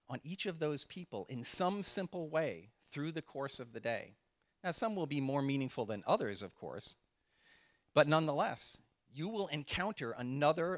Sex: male